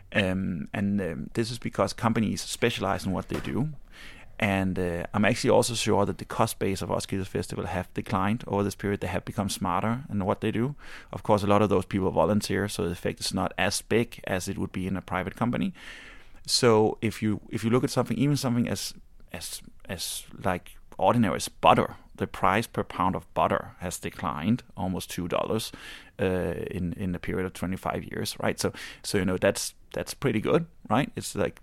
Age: 30-49